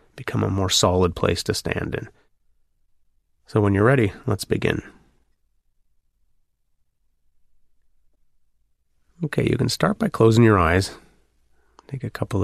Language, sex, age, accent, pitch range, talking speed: English, male, 30-49, American, 75-105 Hz, 120 wpm